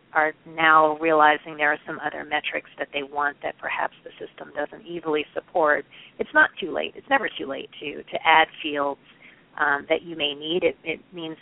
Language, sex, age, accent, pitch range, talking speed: English, female, 30-49, American, 150-175 Hz, 200 wpm